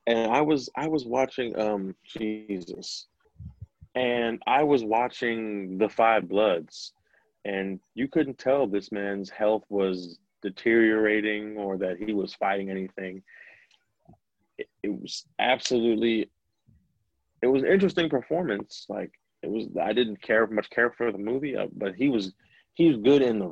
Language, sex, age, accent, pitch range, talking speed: English, male, 30-49, American, 95-120 Hz, 145 wpm